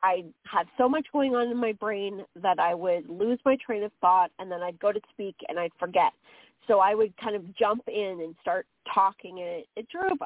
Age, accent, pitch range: 40-59, American, 185-235 Hz